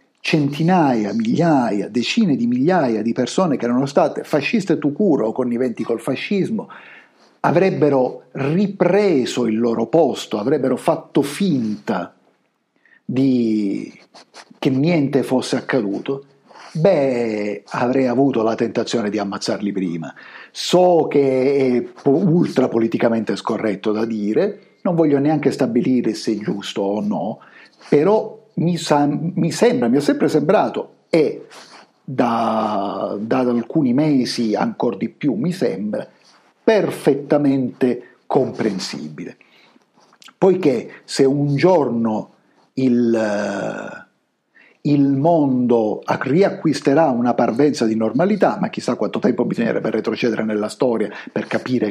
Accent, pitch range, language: native, 115-160 Hz, Italian